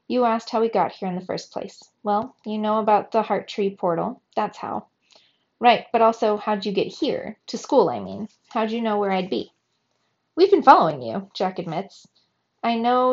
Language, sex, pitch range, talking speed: English, female, 185-225 Hz, 205 wpm